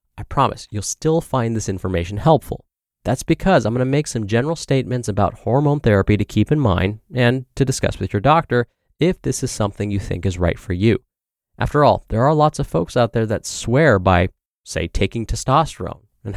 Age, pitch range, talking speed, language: 20-39, 100-135 Hz, 200 wpm, English